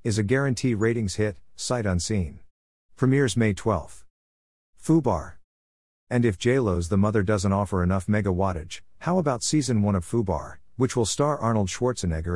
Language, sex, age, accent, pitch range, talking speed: English, male, 50-69, American, 90-115 Hz, 150 wpm